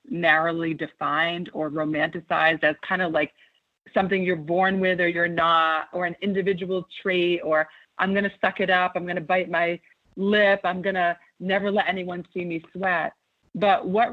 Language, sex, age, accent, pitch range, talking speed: English, female, 30-49, American, 170-200 Hz, 185 wpm